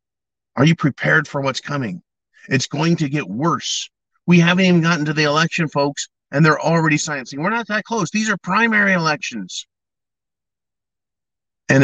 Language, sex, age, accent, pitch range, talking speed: English, male, 50-69, American, 120-155 Hz, 160 wpm